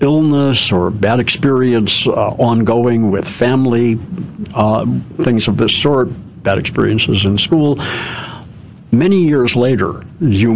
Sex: male